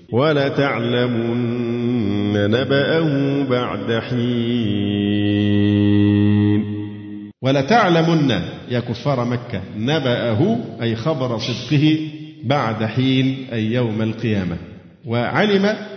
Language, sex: Arabic, male